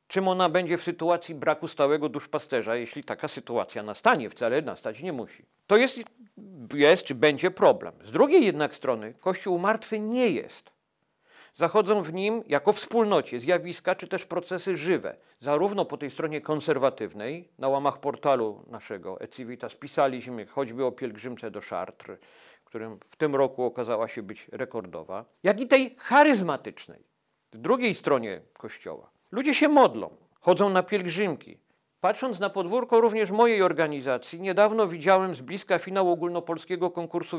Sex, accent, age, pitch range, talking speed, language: male, native, 50-69, 150-205 Hz, 145 wpm, Polish